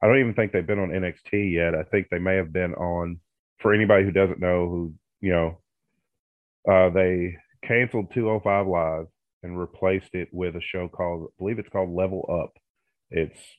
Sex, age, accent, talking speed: male, 30-49, American, 200 wpm